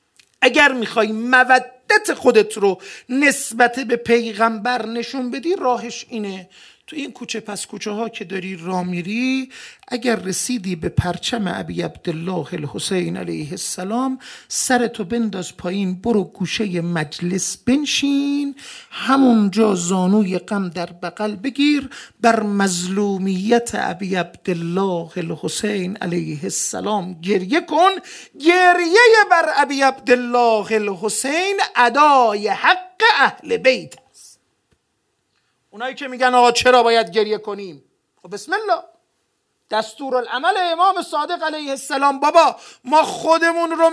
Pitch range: 200-290 Hz